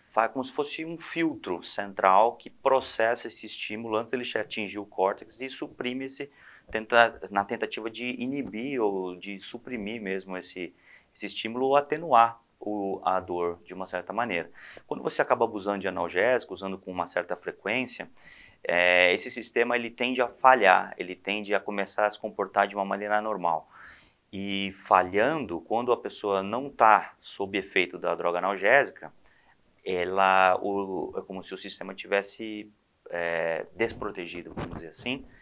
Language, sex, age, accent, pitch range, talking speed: Portuguese, male, 30-49, Brazilian, 95-115 Hz, 160 wpm